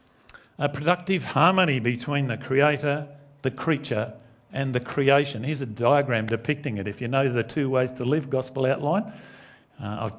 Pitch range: 125-180 Hz